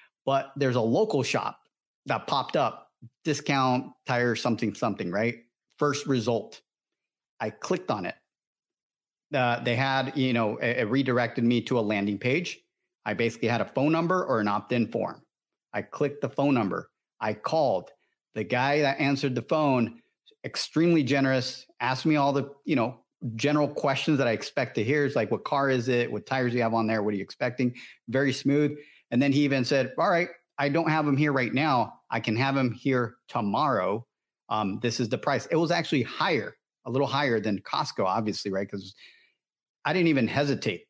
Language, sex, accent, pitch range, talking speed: English, male, American, 115-145 Hz, 195 wpm